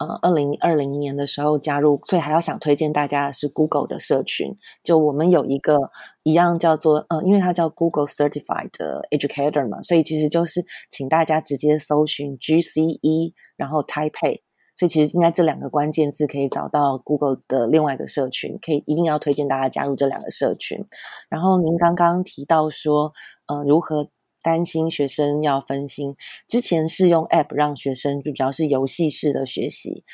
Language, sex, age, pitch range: English, female, 30-49, 145-165 Hz